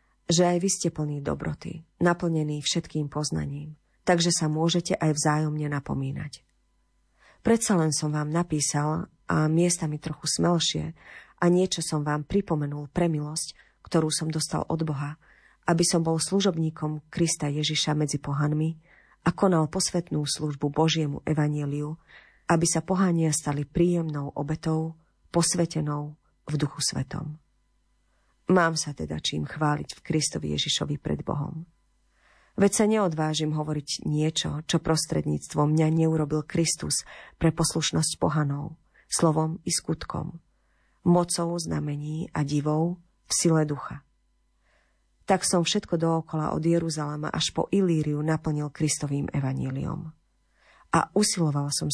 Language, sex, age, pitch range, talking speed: Slovak, female, 40-59, 150-170 Hz, 125 wpm